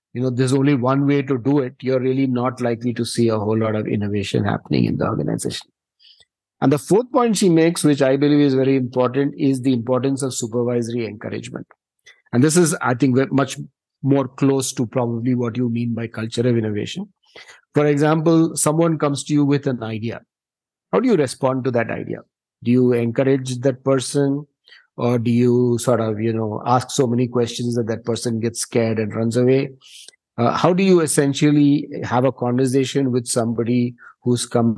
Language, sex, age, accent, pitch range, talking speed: English, male, 50-69, Indian, 115-145 Hz, 190 wpm